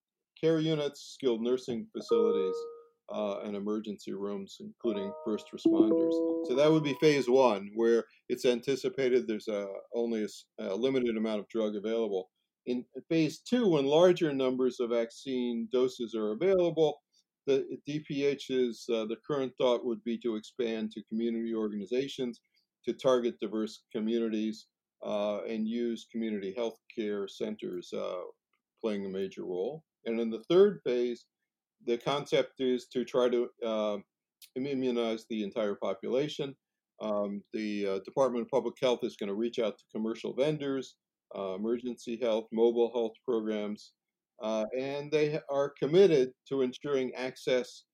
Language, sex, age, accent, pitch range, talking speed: English, male, 50-69, American, 110-145 Hz, 145 wpm